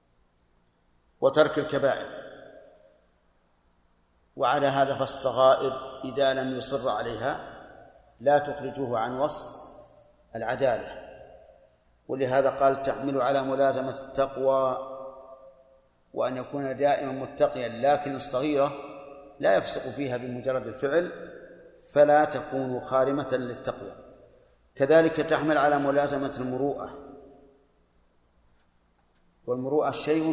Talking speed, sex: 85 wpm, male